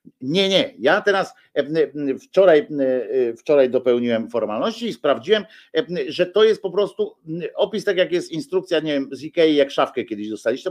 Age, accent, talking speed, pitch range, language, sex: 50-69, native, 155 wpm, 140-215 Hz, Polish, male